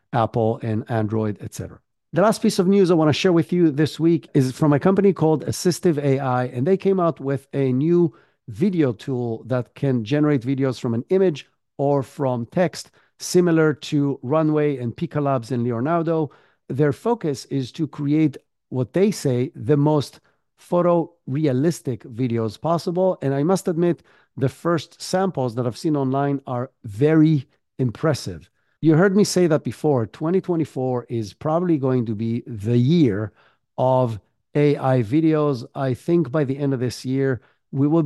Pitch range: 120-160 Hz